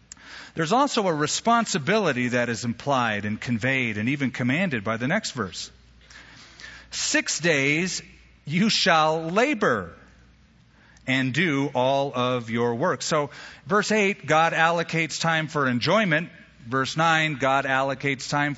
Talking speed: 130 wpm